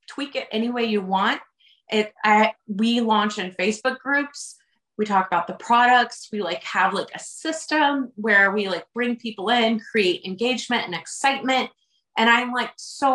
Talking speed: 175 wpm